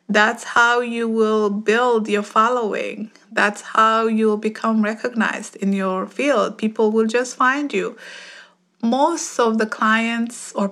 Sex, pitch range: female, 195-230 Hz